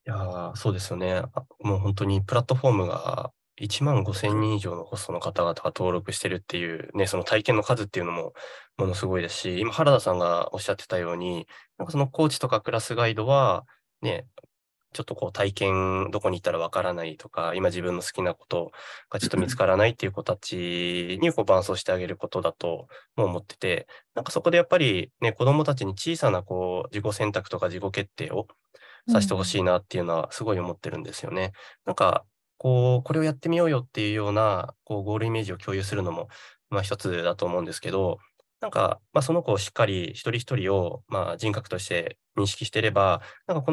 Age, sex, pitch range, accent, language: 20-39, male, 95-120 Hz, native, Japanese